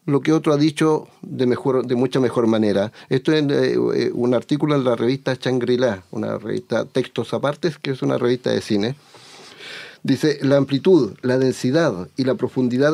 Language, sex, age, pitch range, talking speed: Spanish, male, 50-69, 120-155 Hz, 180 wpm